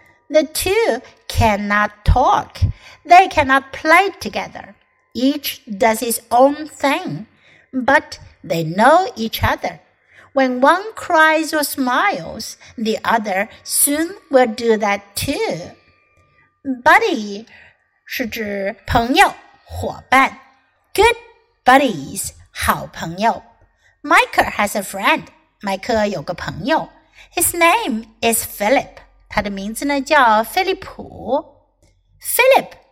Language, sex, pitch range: Chinese, female, 220-325 Hz